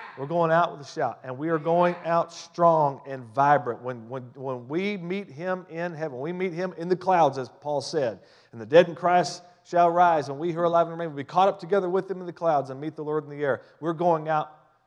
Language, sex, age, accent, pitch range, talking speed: English, male, 40-59, American, 130-170 Hz, 260 wpm